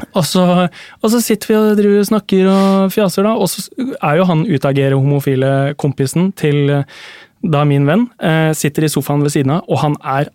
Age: 20-39